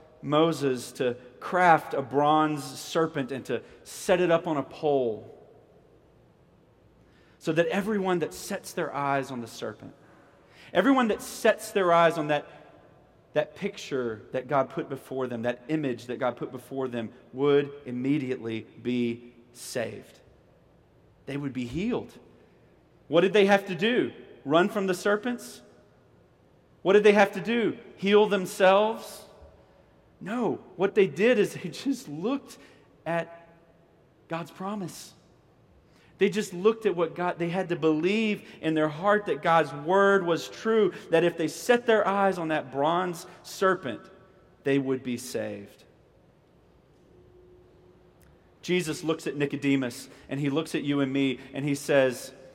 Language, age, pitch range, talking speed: English, 30-49, 135-190 Hz, 145 wpm